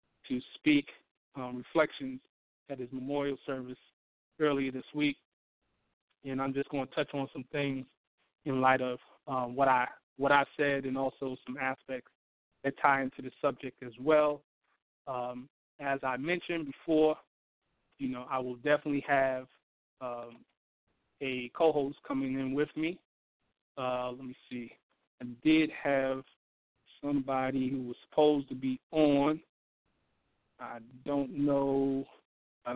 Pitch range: 130-145 Hz